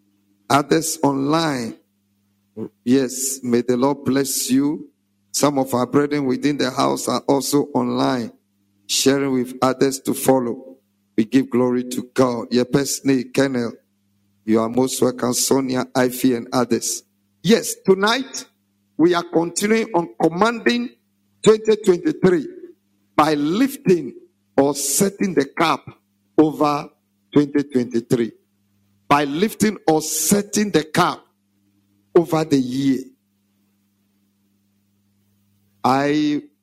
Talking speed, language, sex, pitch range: 110 wpm, English, male, 100-155 Hz